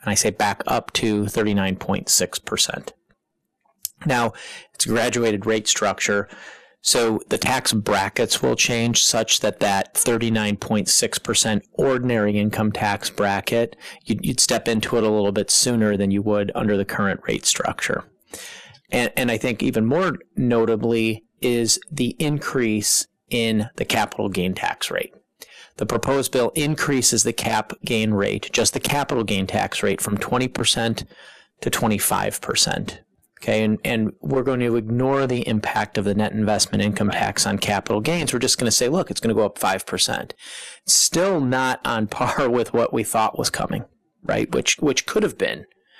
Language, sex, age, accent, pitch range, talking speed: English, male, 30-49, American, 105-120 Hz, 160 wpm